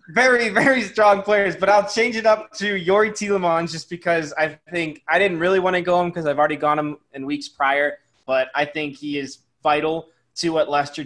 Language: English